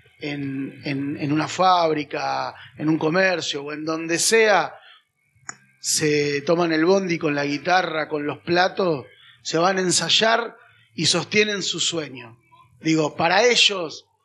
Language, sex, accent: Spanish, male, Argentinian